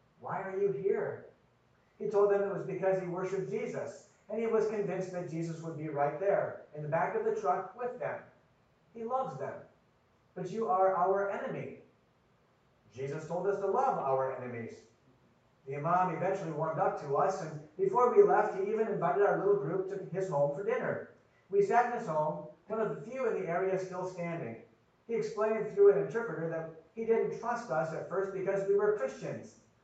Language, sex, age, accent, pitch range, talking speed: English, male, 50-69, American, 165-220 Hz, 195 wpm